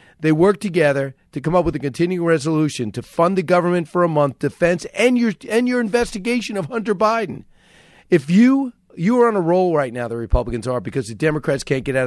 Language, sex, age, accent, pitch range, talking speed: English, male, 40-59, American, 140-205 Hz, 220 wpm